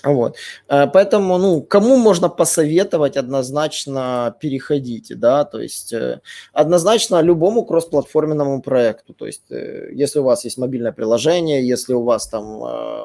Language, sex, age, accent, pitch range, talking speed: Russian, male, 20-39, native, 120-150 Hz, 125 wpm